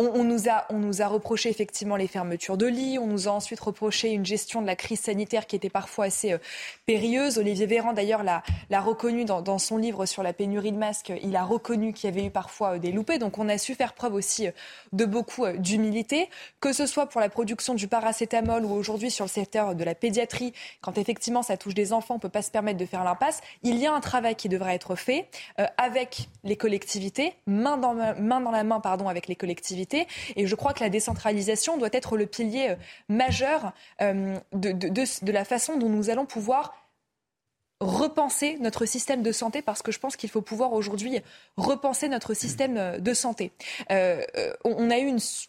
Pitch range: 200-245 Hz